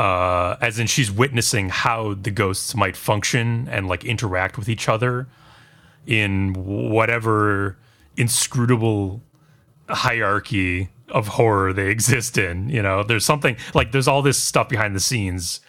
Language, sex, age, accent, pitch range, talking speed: English, male, 30-49, American, 95-120 Hz, 140 wpm